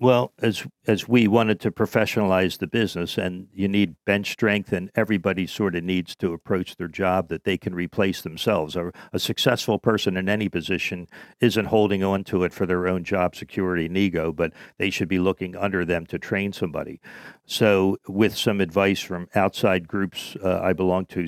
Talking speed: 190 wpm